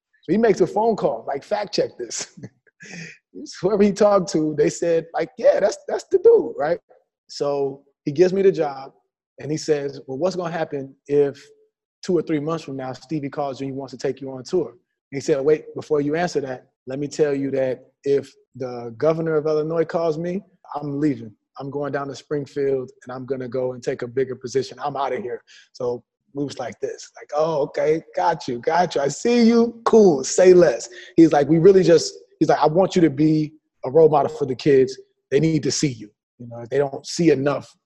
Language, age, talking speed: English, 20-39, 225 wpm